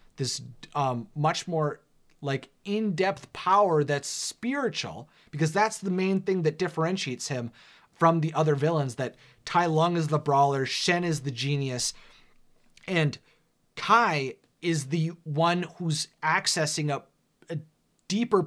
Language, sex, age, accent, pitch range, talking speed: English, male, 30-49, American, 145-185 Hz, 135 wpm